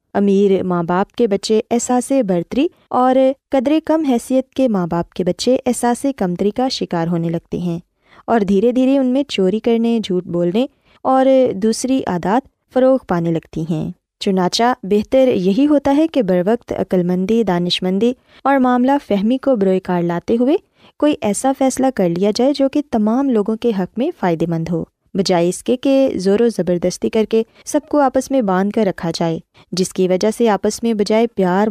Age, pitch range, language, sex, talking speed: 20-39, 185-260 Hz, Urdu, female, 185 wpm